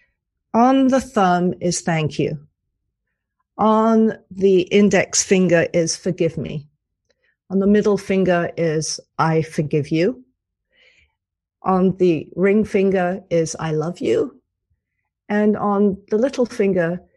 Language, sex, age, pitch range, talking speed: English, female, 40-59, 175-235 Hz, 120 wpm